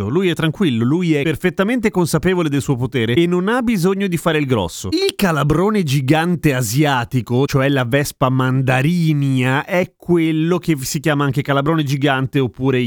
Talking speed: 165 wpm